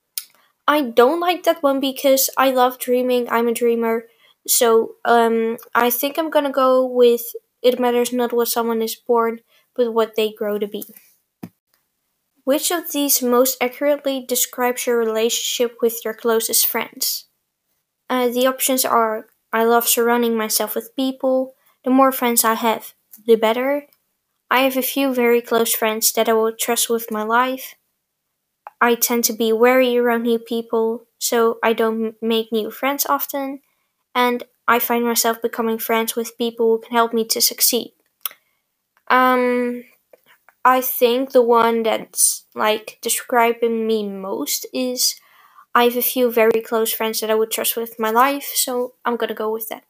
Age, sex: 10-29, female